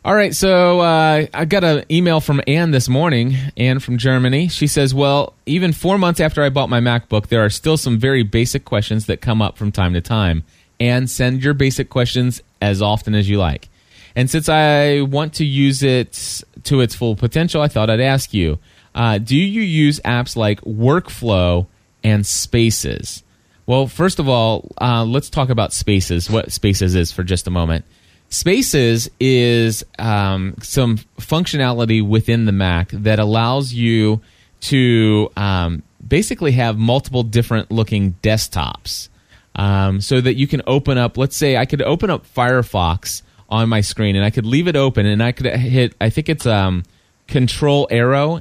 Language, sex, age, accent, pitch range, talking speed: English, male, 20-39, American, 105-135 Hz, 175 wpm